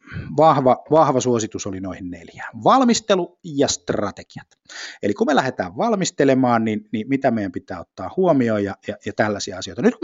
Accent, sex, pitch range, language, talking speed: native, male, 100-130 Hz, Finnish, 165 wpm